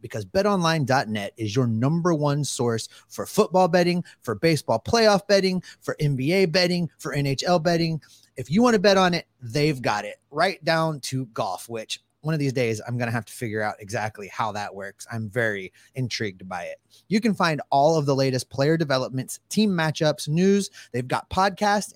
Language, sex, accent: English, male, American